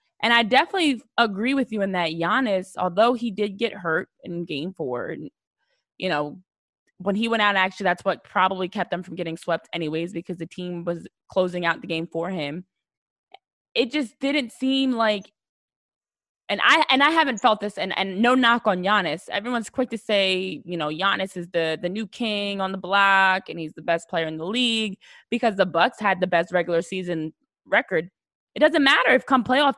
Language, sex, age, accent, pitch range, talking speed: English, female, 20-39, American, 185-260 Hz, 200 wpm